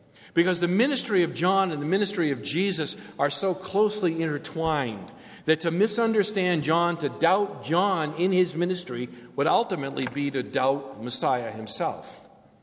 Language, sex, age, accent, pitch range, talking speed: English, male, 50-69, American, 140-190 Hz, 145 wpm